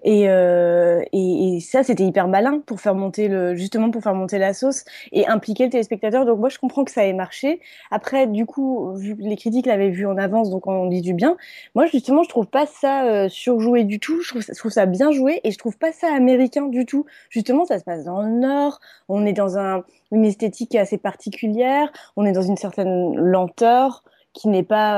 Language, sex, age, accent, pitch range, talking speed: French, female, 20-39, French, 190-240 Hz, 225 wpm